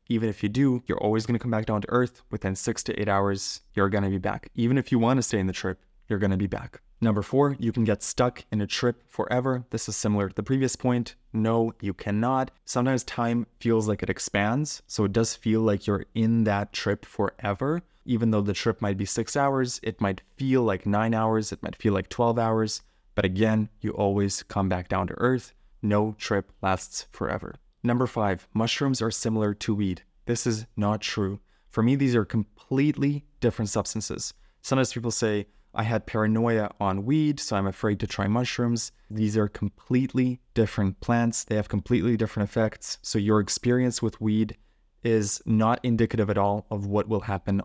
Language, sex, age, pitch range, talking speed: English, male, 20-39, 105-120 Hz, 200 wpm